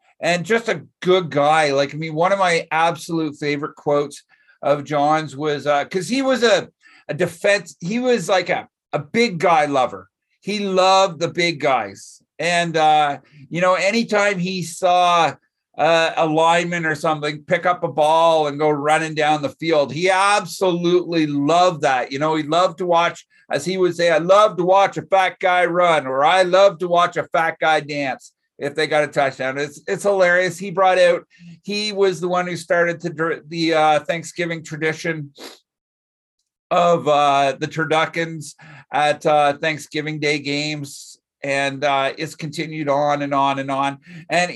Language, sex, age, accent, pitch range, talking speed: English, male, 50-69, American, 150-180 Hz, 175 wpm